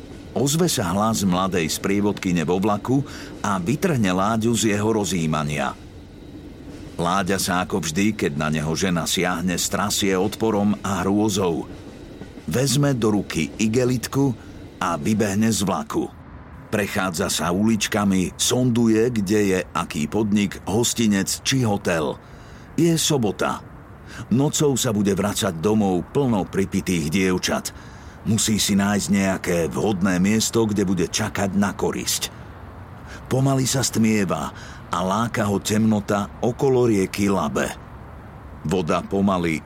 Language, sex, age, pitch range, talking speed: Slovak, male, 50-69, 95-110 Hz, 120 wpm